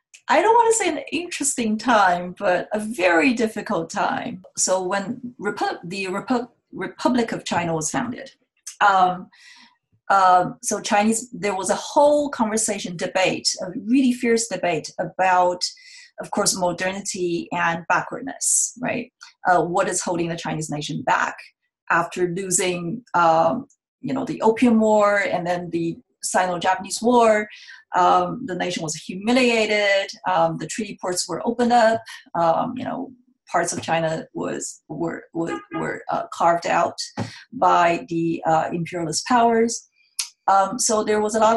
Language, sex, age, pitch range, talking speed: English, female, 30-49, 175-245 Hz, 145 wpm